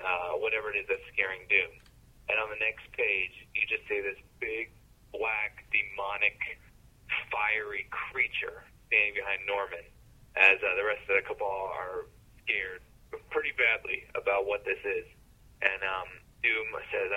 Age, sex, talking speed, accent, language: 30-49, male, 150 wpm, American, English